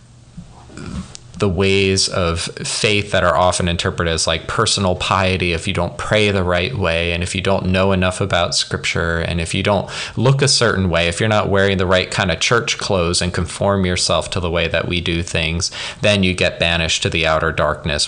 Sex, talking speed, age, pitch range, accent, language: male, 210 wpm, 20-39, 85-110 Hz, American, English